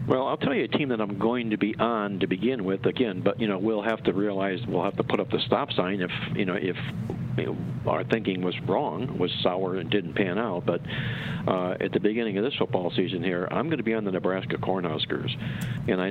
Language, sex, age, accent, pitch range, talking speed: English, male, 50-69, American, 100-125 Hz, 250 wpm